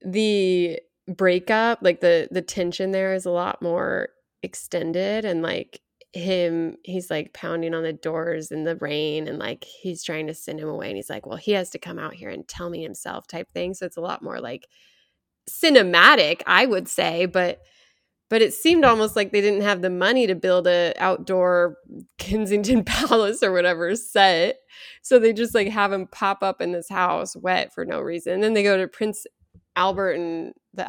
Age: 20-39